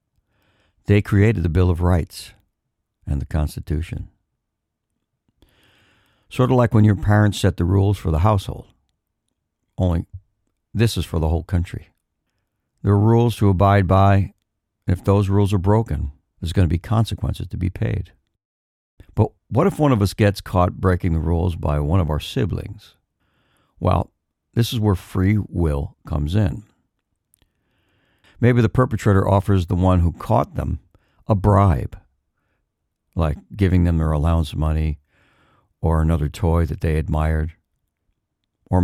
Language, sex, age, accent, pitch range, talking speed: English, male, 60-79, American, 80-105 Hz, 150 wpm